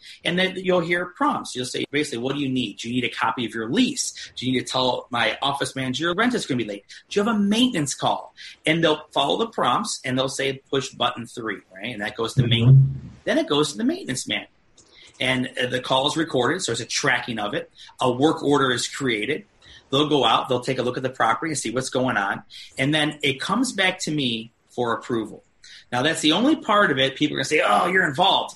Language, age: English, 40-59